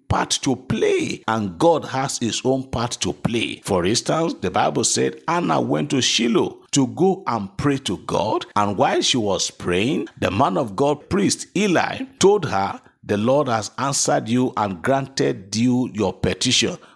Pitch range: 115-160 Hz